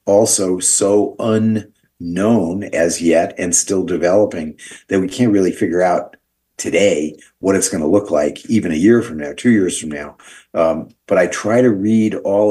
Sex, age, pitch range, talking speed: male, 50-69, 85-105 Hz, 175 wpm